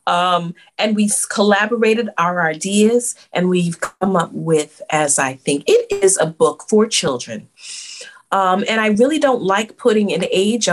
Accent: American